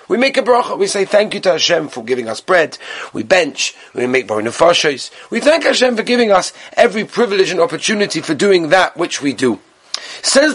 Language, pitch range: English, 165-225 Hz